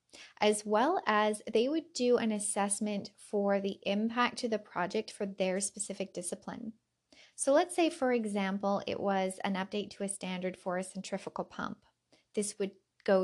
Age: 20-39